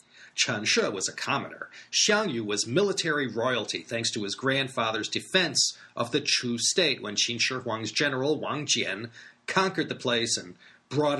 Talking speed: 165 wpm